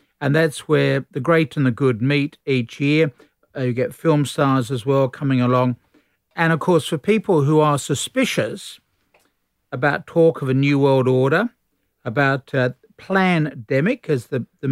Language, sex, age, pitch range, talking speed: English, male, 50-69, 135-165 Hz, 165 wpm